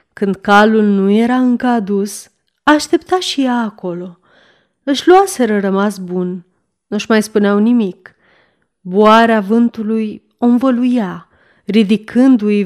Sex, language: female, Romanian